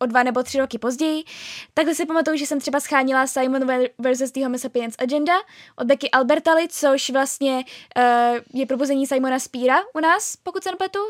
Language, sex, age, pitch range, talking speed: Czech, female, 10-29, 255-310 Hz, 180 wpm